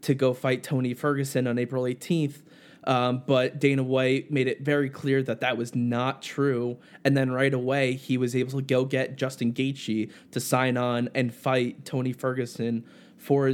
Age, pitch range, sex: 20-39, 120-140 Hz, male